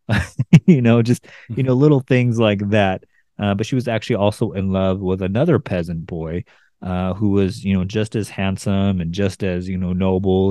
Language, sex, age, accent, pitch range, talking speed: English, male, 30-49, American, 95-115 Hz, 200 wpm